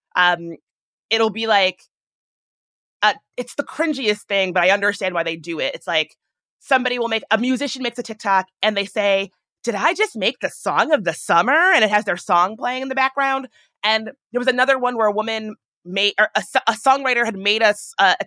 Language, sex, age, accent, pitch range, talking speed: English, female, 30-49, American, 195-250 Hz, 215 wpm